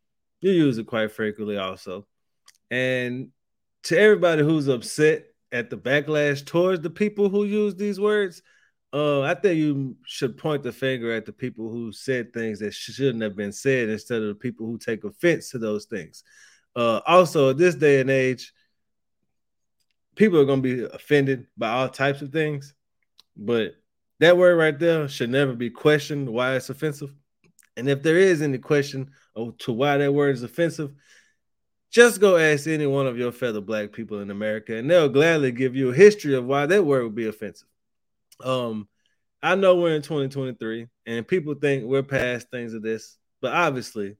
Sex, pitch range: male, 115-150 Hz